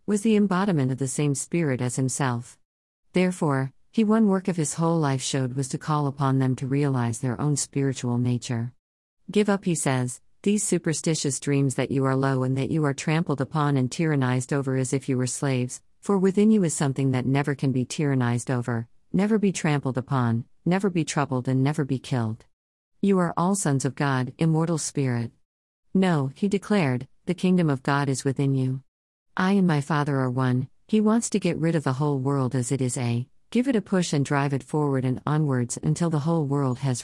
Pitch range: 130-165 Hz